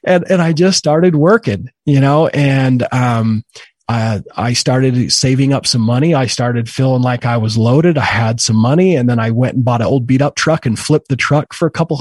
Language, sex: English, male